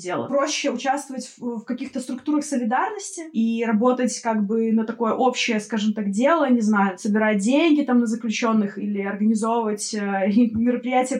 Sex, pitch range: female, 215-250 Hz